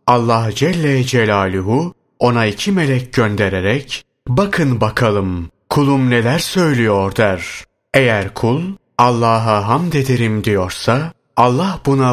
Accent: native